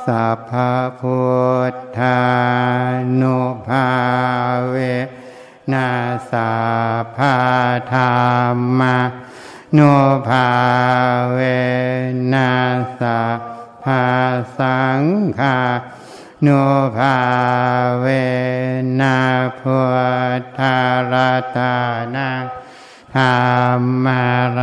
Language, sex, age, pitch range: Thai, male, 60-79, 125-130 Hz